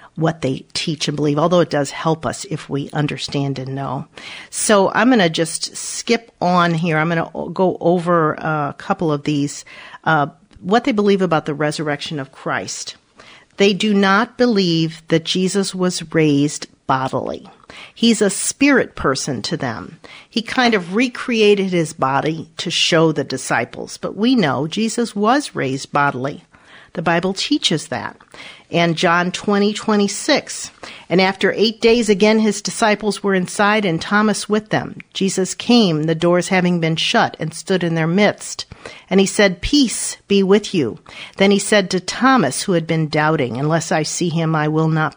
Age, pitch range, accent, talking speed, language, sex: 50-69, 155-210 Hz, American, 175 wpm, English, female